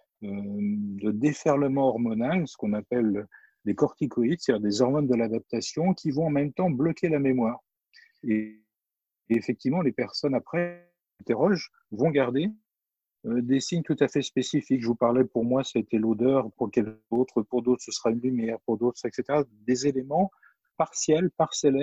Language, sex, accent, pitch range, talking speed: French, male, French, 110-145 Hz, 155 wpm